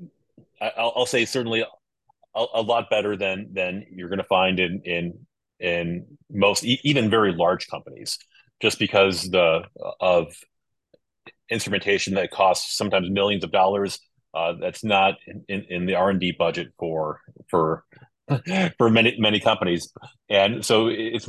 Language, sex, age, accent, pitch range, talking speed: English, male, 30-49, American, 90-110 Hz, 145 wpm